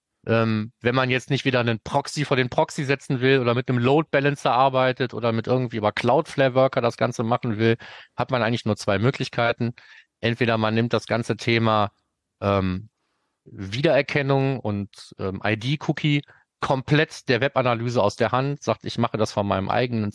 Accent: German